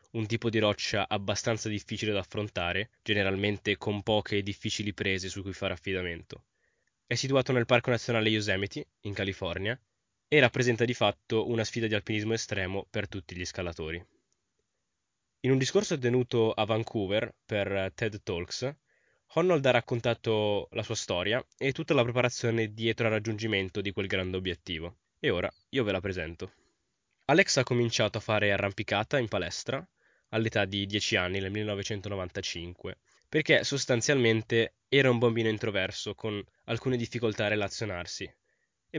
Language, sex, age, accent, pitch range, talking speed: Italian, male, 10-29, native, 100-120 Hz, 150 wpm